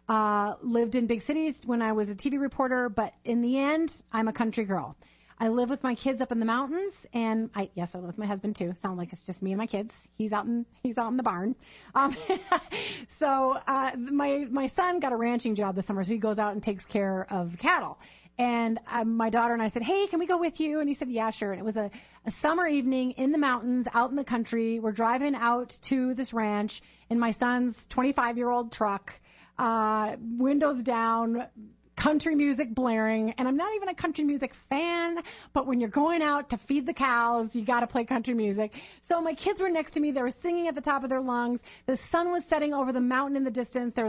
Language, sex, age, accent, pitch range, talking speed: English, female, 30-49, American, 215-270 Hz, 240 wpm